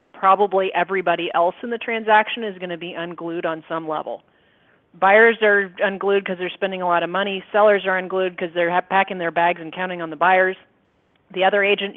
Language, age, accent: English, 30-49, American